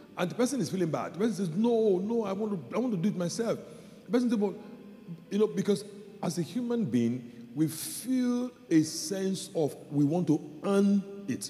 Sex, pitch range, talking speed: male, 130-195 Hz, 215 wpm